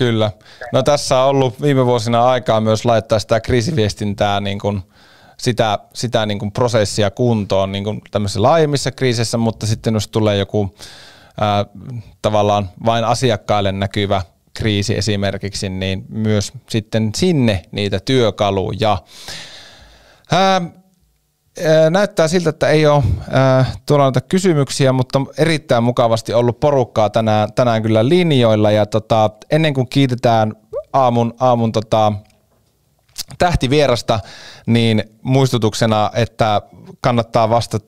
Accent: native